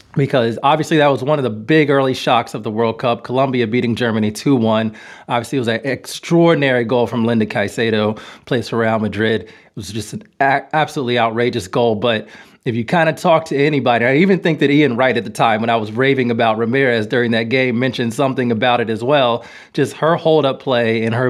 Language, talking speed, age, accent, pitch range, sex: English, 215 wpm, 30-49, American, 120-145 Hz, male